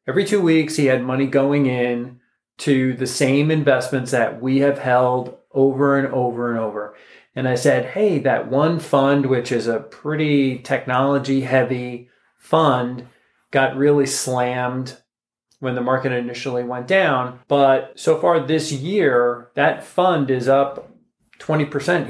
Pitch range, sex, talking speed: 125-150 Hz, male, 145 wpm